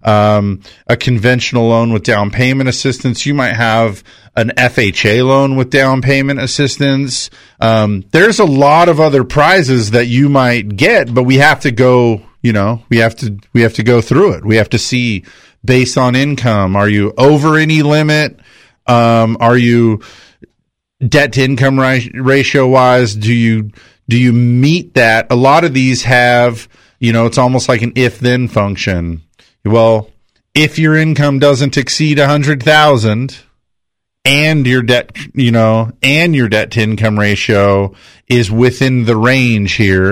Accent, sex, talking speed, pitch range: American, male, 165 wpm, 110-135 Hz